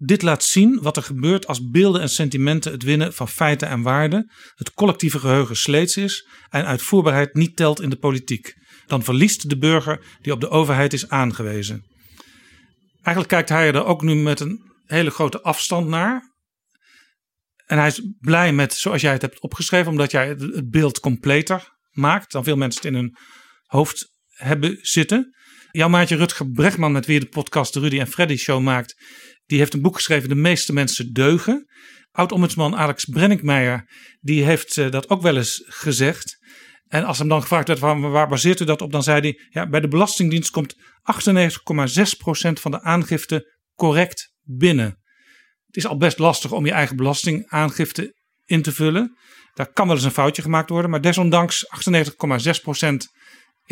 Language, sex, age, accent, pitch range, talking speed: Dutch, male, 50-69, Dutch, 145-175 Hz, 175 wpm